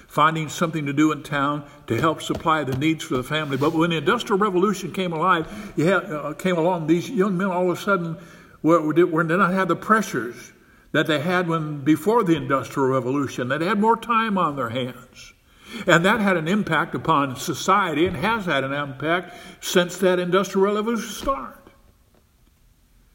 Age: 60-79